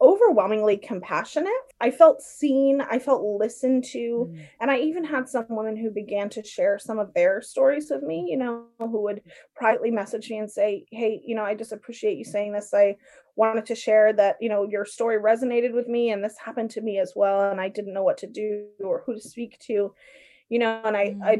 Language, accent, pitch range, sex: English, American, 215-270 Hz, female